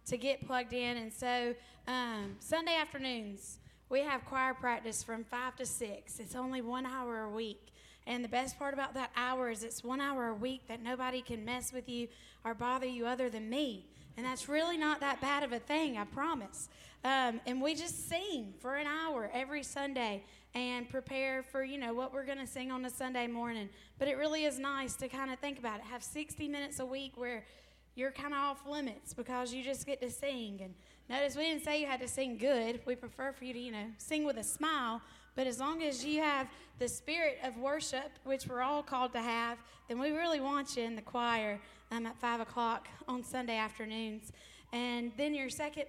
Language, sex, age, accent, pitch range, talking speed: English, female, 10-29, American, 230-275 Hz, 220 wpm